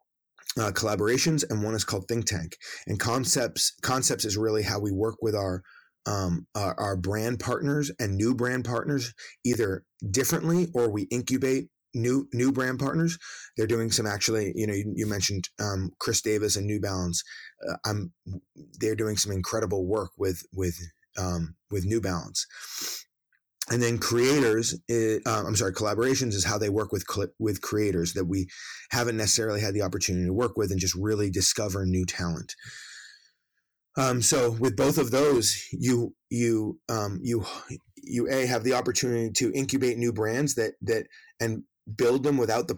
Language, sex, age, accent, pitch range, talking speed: English, male, 20-39, American, 100-125 Hz, 170 wpm